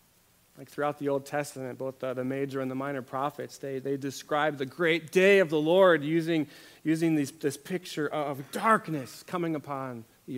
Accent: American